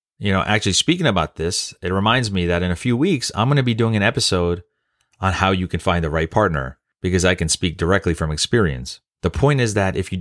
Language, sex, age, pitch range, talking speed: English, male, 30-49, 85-105 Hz, 245 wpm